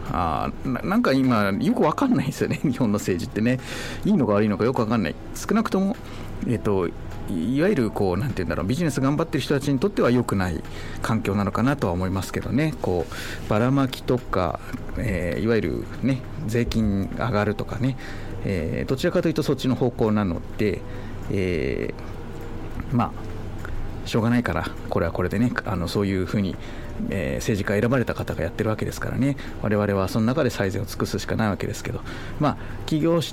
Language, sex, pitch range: Japanese, male, 100-130 Hz